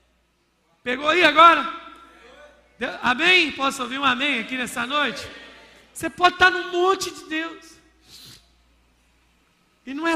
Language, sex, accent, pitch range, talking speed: Portuguese, male, Brazilian, 220-300 Hz, 130 wpm